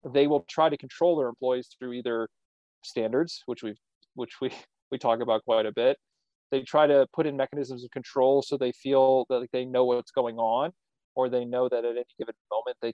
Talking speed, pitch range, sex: 215 wpm, 120-145 Hz, male